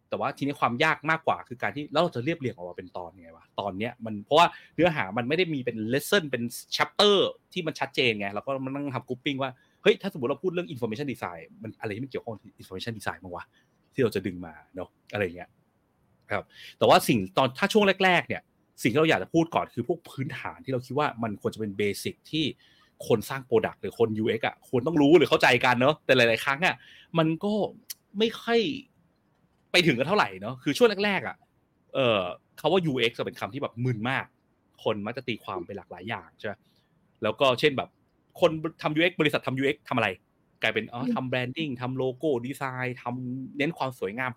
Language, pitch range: Thai, 115-160 Hz